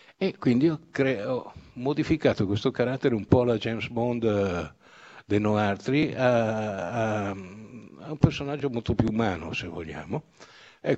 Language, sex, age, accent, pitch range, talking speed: Italian, male, 60-79, native, 105-130 Hz, 150 wpm